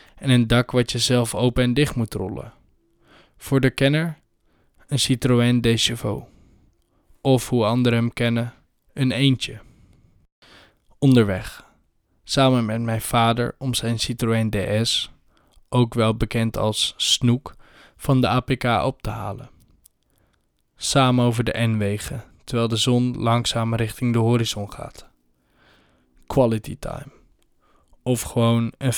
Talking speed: 125 wpm